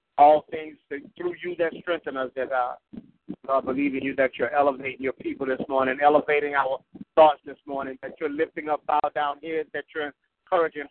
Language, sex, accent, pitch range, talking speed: English, male, American, 145-170 Hz, 205 wpm